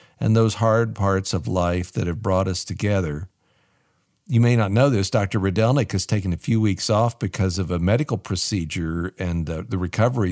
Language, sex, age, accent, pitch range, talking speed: English, male, 50-69, American, 95-120 Hz, 185 wpm